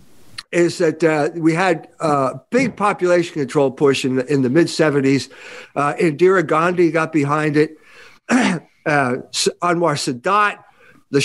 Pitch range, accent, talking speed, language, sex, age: 160-220 Hz, American, 135 wpm, English, male, 50-69